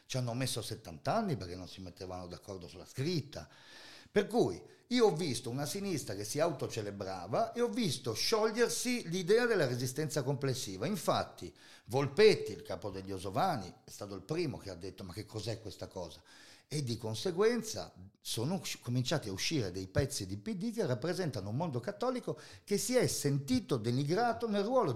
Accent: native